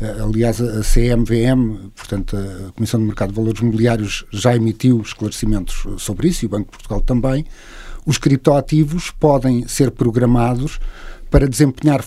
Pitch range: 115-135 Hz